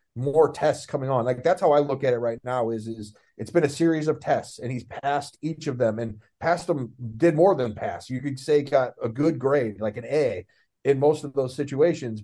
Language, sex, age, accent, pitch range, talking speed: English, male, 30-49, American, 115-145 Hz, 240 wpm